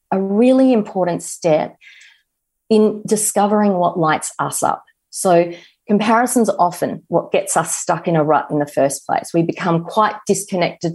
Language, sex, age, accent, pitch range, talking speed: English, female, 30-49, Australian, 170-220 Hz, 155 wpm